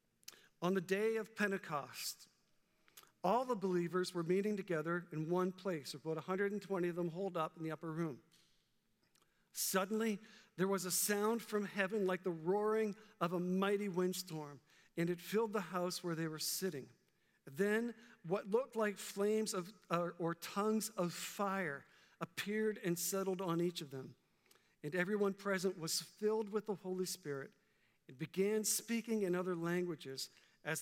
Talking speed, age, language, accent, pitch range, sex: 160 wpm, 50-69, English, American, 175-215 Hz, male